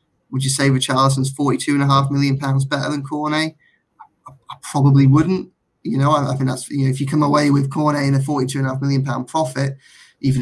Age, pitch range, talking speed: 20-39, 130-140 Hz, 230 wpm